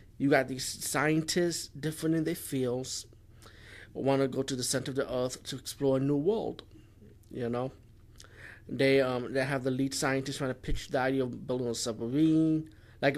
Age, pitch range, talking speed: 20-39, 115-145 Hz, 190 wpm